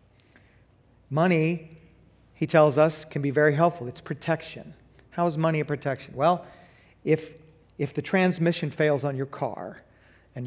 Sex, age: male, 40-59